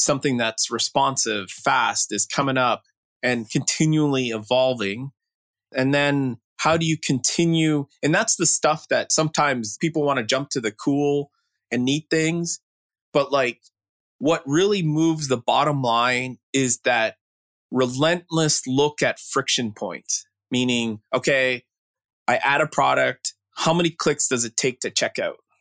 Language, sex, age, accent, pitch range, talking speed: English, male, 20-39, American, 125-155 Hz, 145 wpm